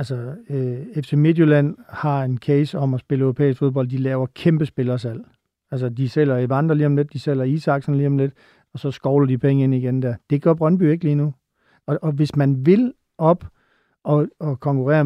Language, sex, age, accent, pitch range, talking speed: Danish, male, 50-69, native, 135-155 Hz, 205 wpm